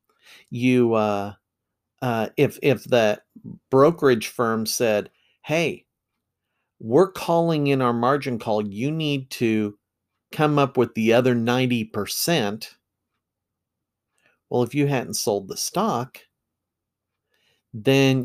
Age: 50-69